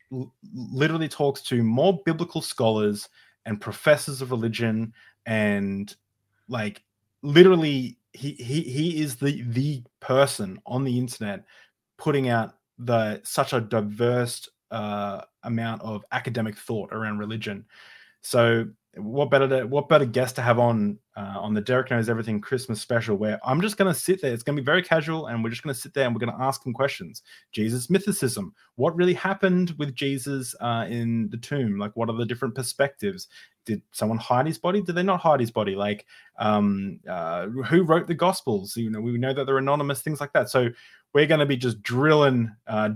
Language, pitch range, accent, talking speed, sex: English, 110-140 Hz, Australian, 180 wpm, male